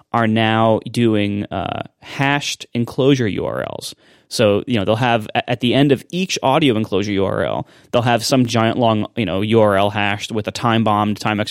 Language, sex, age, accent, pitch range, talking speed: English, male, 30-49, American, 110-145 Hz, 145 wpm